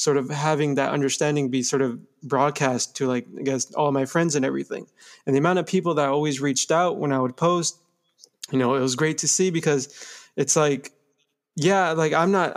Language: English